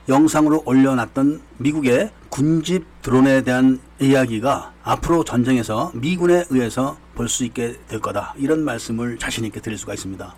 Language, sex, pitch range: Korean, male, 125-180 Hz